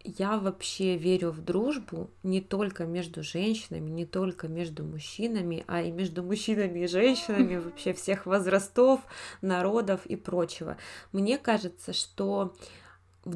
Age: 20-39